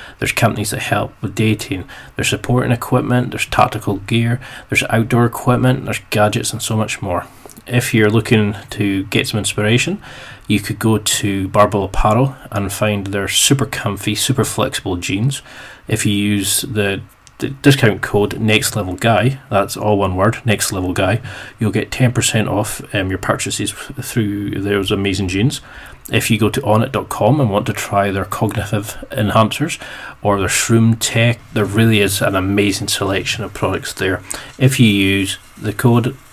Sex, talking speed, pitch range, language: male, 160 wpm, 100-125 Hz, English